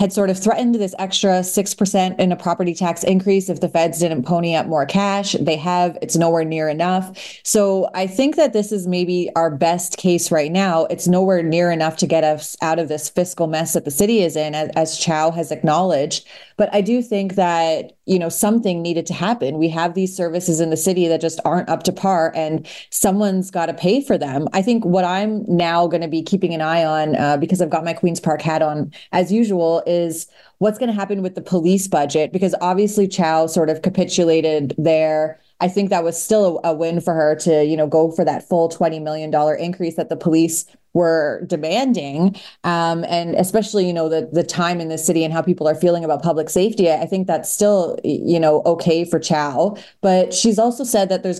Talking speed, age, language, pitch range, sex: 215 wpm, 30-49, English, 160-185 Hz, female